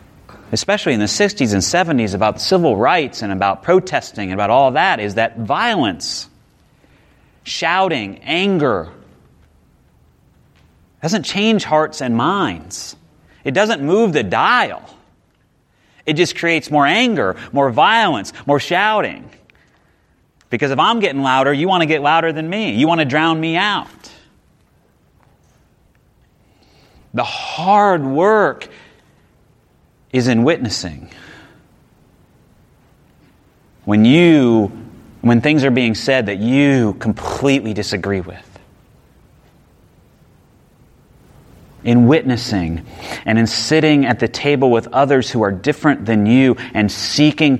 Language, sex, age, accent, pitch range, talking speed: English, male, 30-49, American, 105-150 Hz, 115 wpm